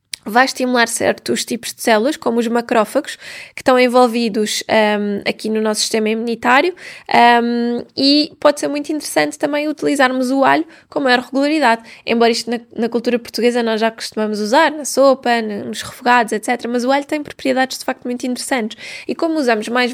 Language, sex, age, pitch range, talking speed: Portuguese, female, 10-29, 220-255 Hz, 170 wpm